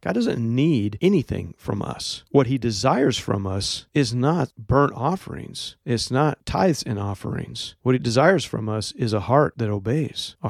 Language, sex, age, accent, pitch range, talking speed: English, male, 40-59, American, 110-140 Hz, 175 wpm